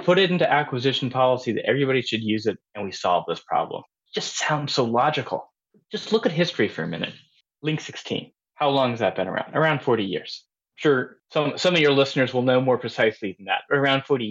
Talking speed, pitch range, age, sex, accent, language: 215 wpm, 125-170 Hz, 20-39, male, American, English